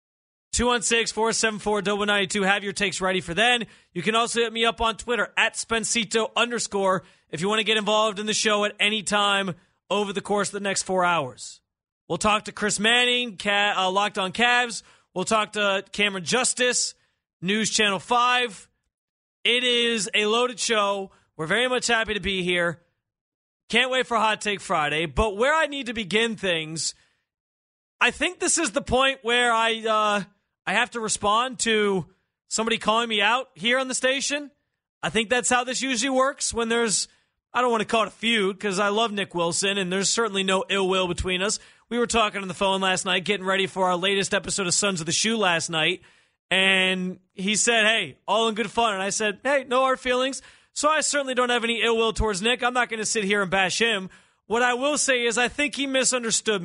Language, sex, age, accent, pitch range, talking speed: English, male, 30-49, American, 195-235 Hz, 210 wpm